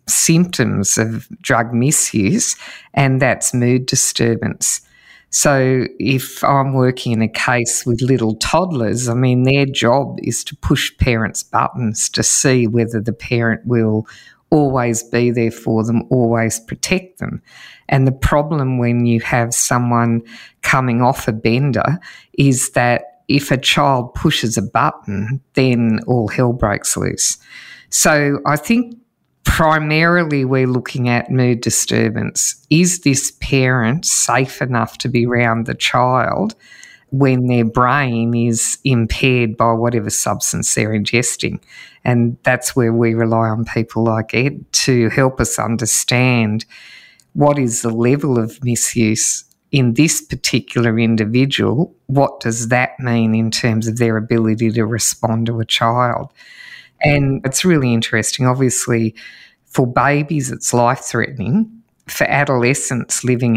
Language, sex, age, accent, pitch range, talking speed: English, female, 50-69, Australian, 115-135 Hz, 135 wpm